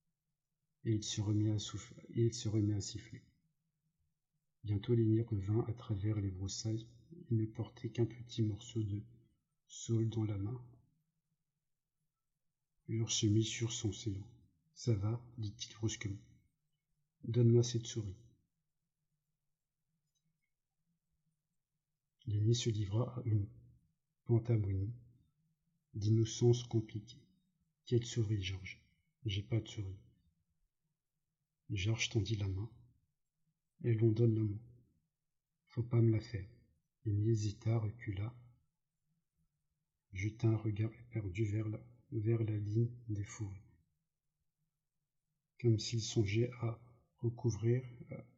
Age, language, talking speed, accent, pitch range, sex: 50-69, French, 120 wpm, French, 110-150 Hz, male